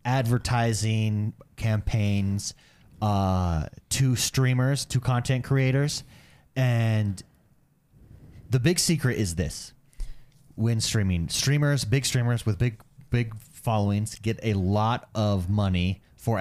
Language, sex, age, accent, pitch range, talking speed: English, male, 30-49, American, 105-130 Hz, 105 wpm